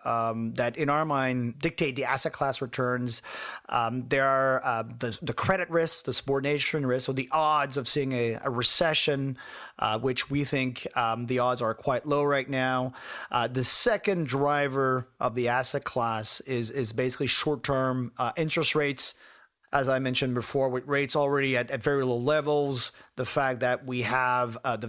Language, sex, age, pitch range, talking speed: English, male, 30-49, 125-150 Hz, 180 wpm